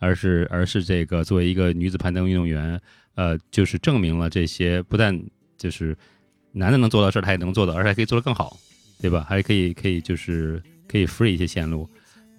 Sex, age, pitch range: male, 30-49, 85-105 Hz